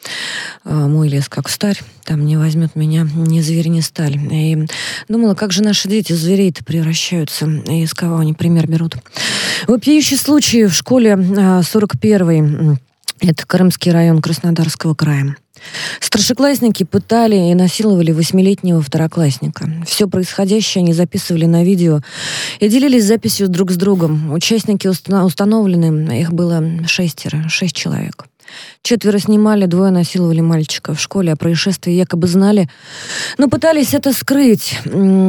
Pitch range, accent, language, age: 160-195 Hz, native, Russian, 20-39